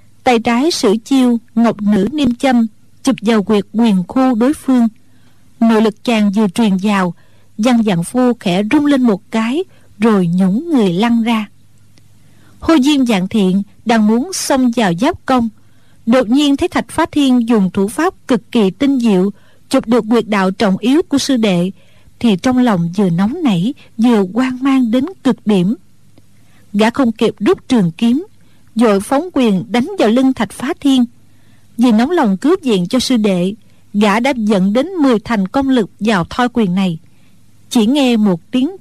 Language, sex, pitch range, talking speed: Vietnamese, female, 200-260 Hz, 180 wpm